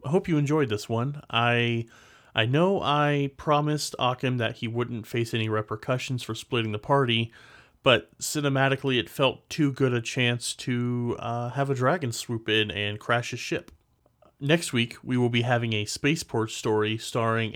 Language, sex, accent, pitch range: English, male, American, 110-135 Hz